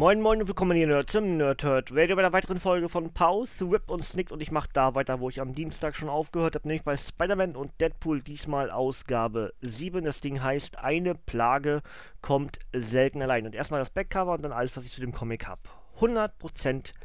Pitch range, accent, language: 130-175 Hz, German, German